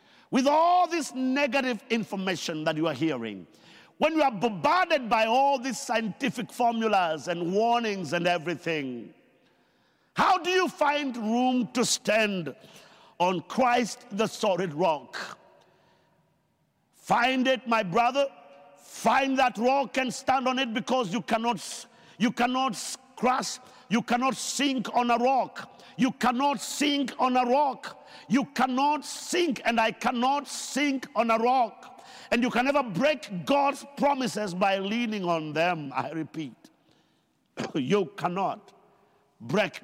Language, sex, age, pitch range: English, male, 50-69, 180-265 Hz